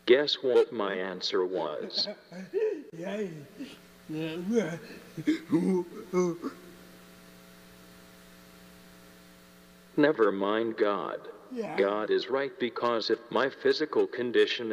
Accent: American